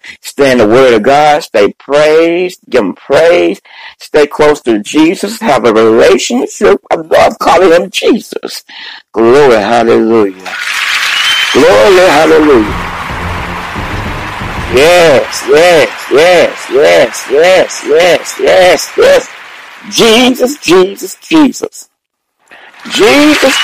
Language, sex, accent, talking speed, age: English, male, American, 95 wpm, 60-79